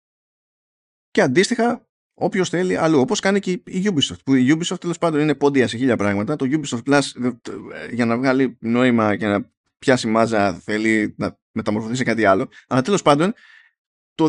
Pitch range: 125-170 Hz